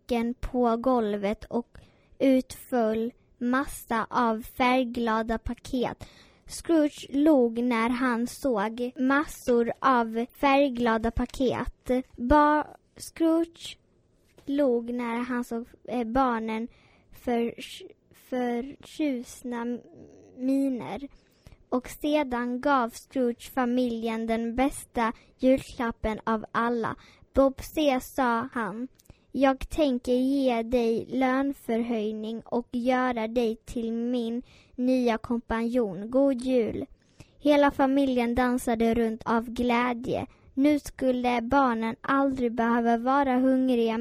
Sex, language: female, Swedish